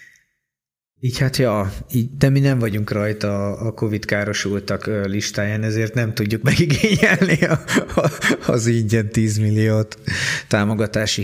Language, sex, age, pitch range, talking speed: Hungarian, male, 30-49, 105-125 Hz, 130 wpm